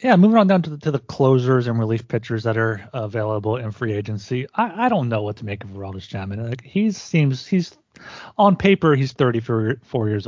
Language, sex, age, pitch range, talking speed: English, male, 30-49, 110-130 Hz, 220 wpm